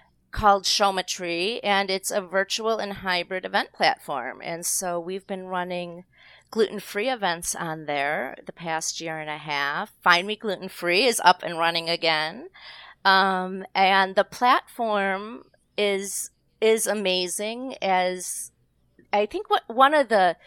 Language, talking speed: English, 145 wpm